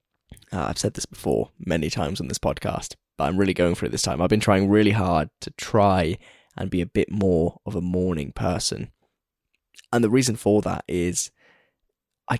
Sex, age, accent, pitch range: male, 10-29, British, 95-105 Hz